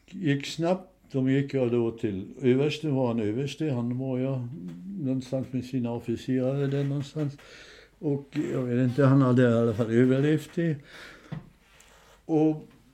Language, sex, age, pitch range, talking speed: Swedish, male, 60-79, 125-165 Hz, 150 wpm